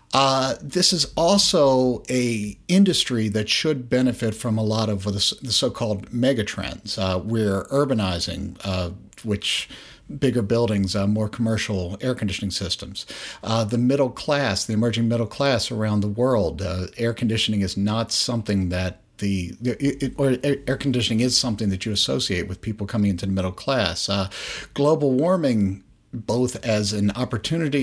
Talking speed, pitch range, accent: 155 wpm, 100-125 Hz, American